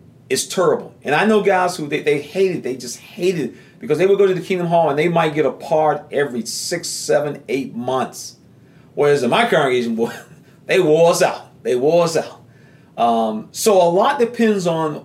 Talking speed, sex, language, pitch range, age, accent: 205 wpm, male, English, 135-185 Hz, 40-59, American